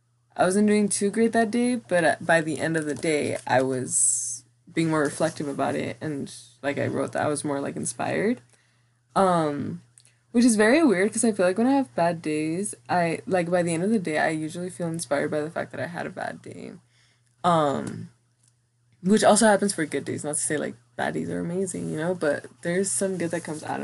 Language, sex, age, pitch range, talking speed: English, female, 20-39, 140-180 Hz, 225 wpm